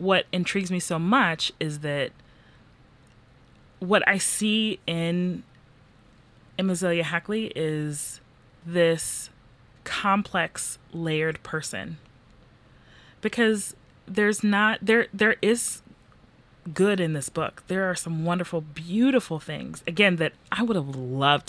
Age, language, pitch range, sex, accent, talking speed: 30-49, English, 145-185 Hz, female, American, 115 wpm